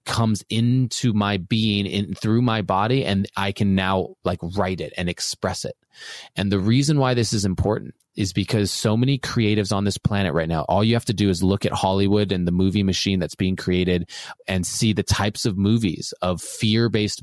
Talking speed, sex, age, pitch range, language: 200 wpm, male, 20-39, 95-115 Hz, English